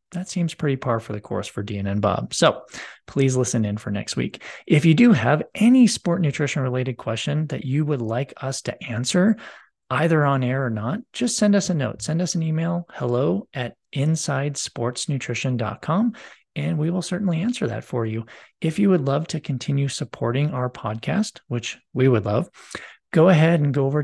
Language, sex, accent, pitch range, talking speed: English, male, American, 120-160 Hz, 190 wpm